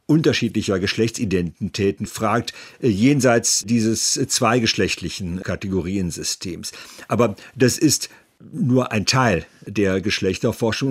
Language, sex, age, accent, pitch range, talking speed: German, male, 50-69, German, 105-125 Hz, 85 wpm